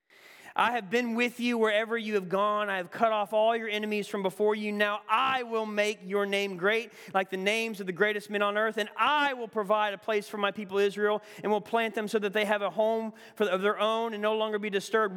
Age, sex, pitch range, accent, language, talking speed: 30-49, male, 185-235 Hz, American, English, 250 wpm